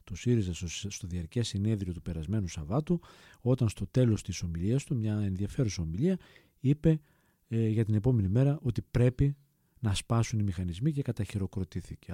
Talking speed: 155 wpm